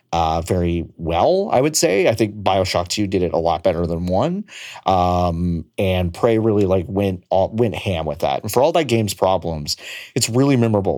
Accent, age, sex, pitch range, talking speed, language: American, 30-49, male, 90-120 Hz, 200 wpm, English